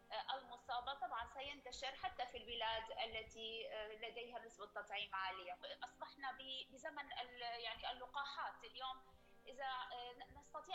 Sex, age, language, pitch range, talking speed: female, 20-39, Arabic, 240-300 Hz, 100 wpm